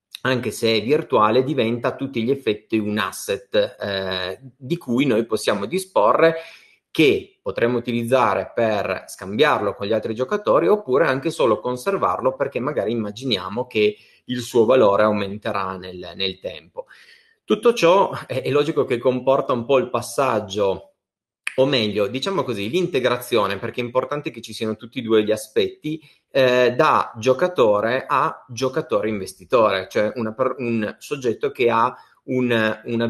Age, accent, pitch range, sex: 30-49, native, 105-130 Hz, male